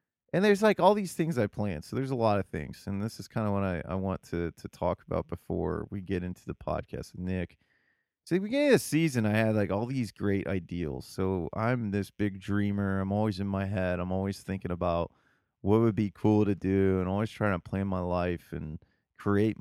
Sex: male